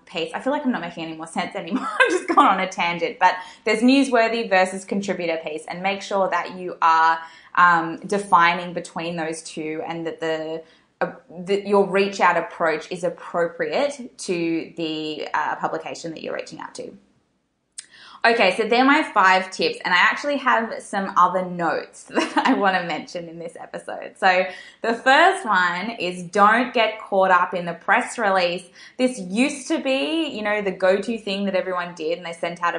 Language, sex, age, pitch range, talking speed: English, female, 20-39, 170-235 Hz, 185 wpm